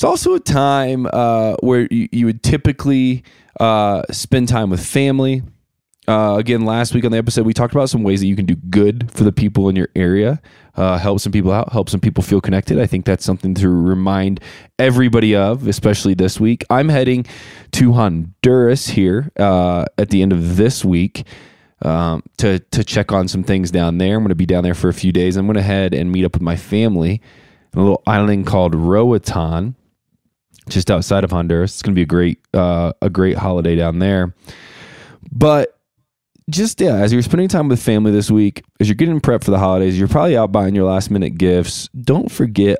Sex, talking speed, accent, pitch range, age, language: male, 210 wpm, American, 95-125 Hz, 20-39, English